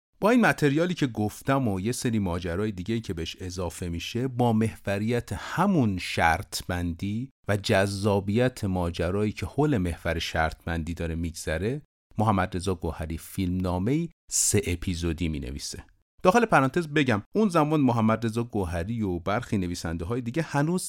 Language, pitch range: Persian, 90-125 Hz